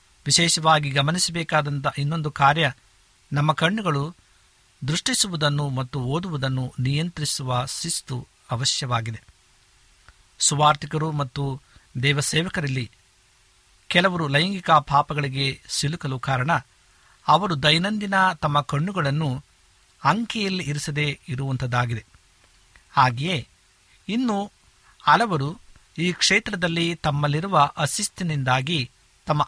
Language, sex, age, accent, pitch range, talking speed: Kannada, male, 60-79, native, 125-160 Hz, 70 wpm